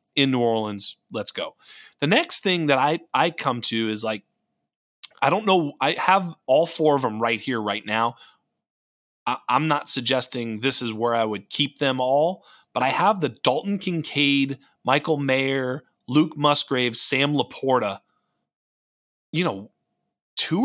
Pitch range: 115-150 Hz